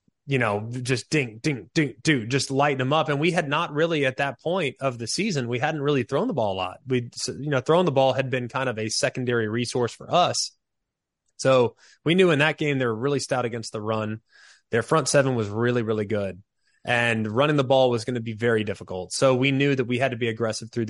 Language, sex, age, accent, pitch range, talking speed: English, male, 20-39, American, 115-140 Hz, 245 wpm